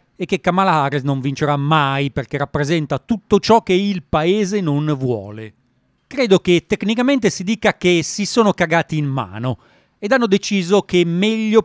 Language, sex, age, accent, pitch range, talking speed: Italian, male, 40-59, native, 145-190 Hz, 170 wpm